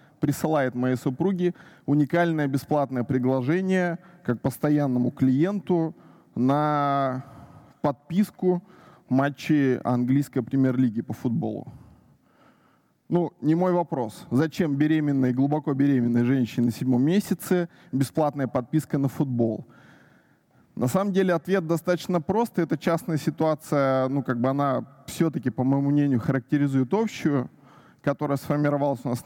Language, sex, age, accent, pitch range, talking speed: Russian, male, 20-39, native, 135-170 Hz, 115 wpm